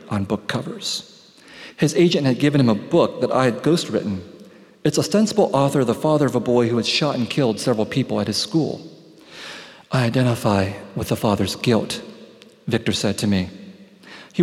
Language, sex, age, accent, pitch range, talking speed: English, male, 40-59, American, 105-155 Hz, 185 wpm